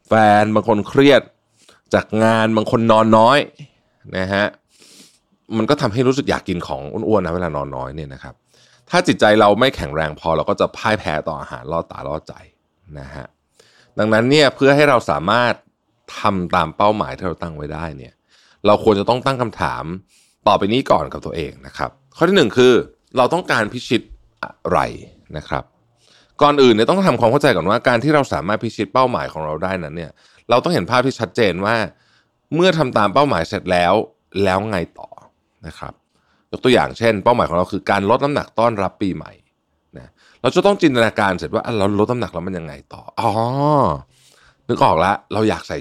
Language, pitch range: Thai, 85-120 Hz